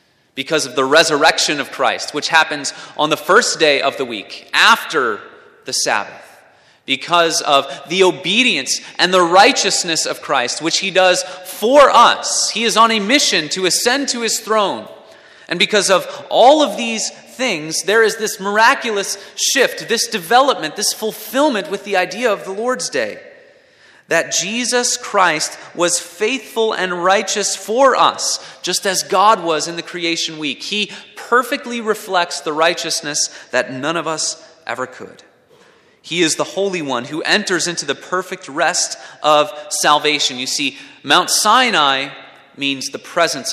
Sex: male